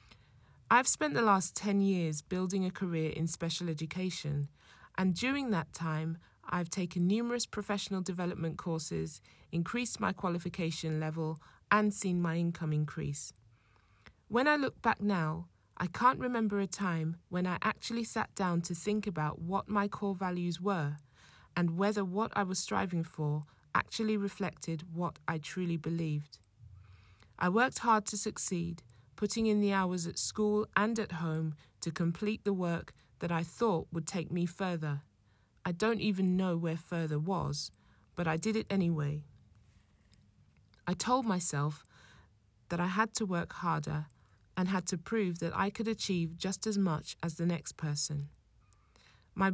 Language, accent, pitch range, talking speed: English, British, 150-200 Hz, 155 wpm